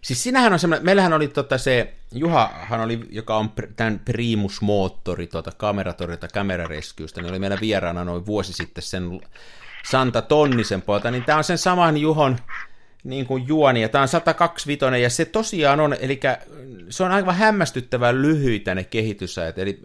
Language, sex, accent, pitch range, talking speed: Finnish, male, native, 100-140 Hz, 165 wpm